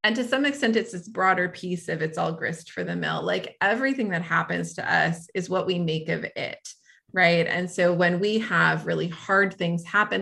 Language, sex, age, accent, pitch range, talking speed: English, female, 30-49, American, 170-210 Hz, 215 wpm